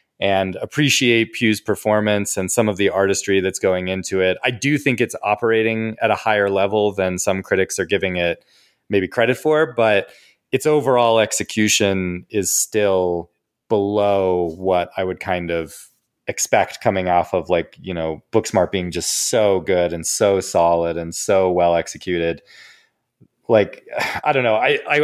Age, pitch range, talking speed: 30-49, 90-115 Hz, 160 wpm